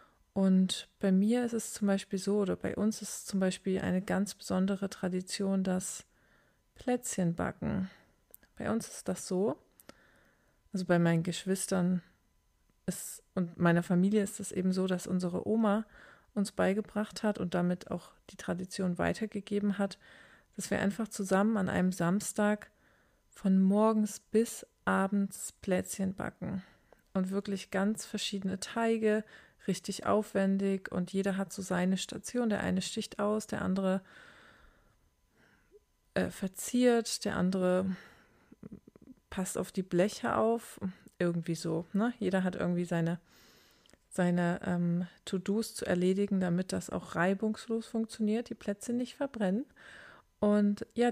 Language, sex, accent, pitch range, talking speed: German, female, German, 185-210 Hz, 135 wpm